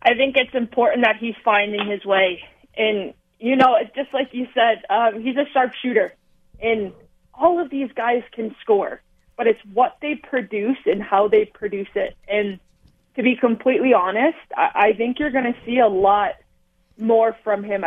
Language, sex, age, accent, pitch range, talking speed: English, female, 20-39, American, 195-245 Hz, 190 wpm